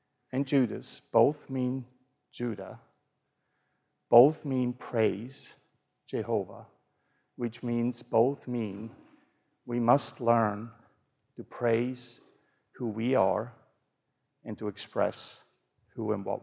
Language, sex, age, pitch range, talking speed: English, male, 50-69, 110-125 Hz, 100 wpm